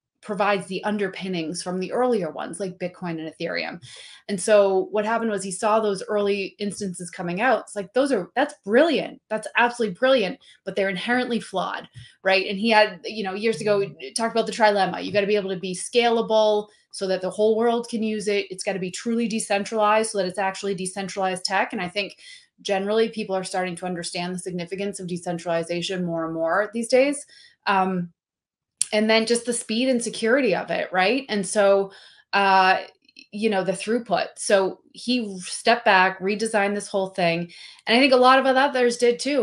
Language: Italian